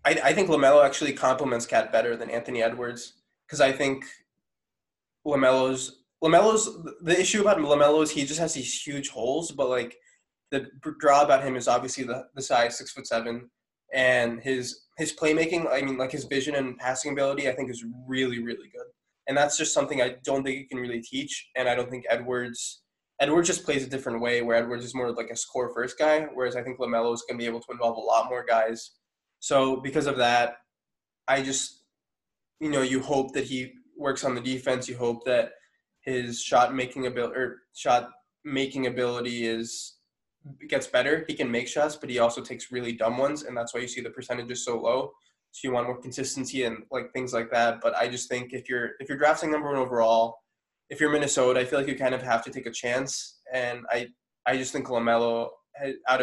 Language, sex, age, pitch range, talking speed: English, male, 20-39, 120-140 Hz, 210 wpm